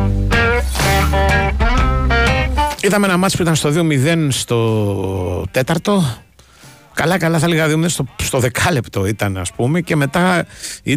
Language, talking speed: Greek, 115 wpm